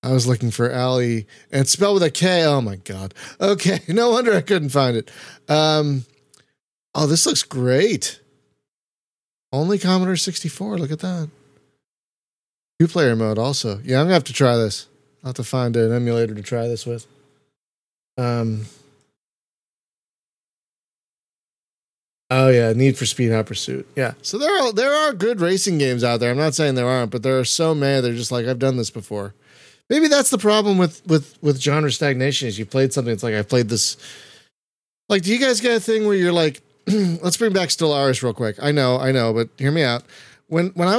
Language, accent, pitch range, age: English, American, 120-170 Hz, 30-49